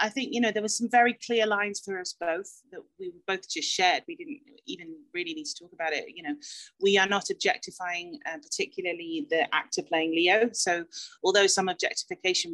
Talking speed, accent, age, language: 205 wpm, British, 30-49, English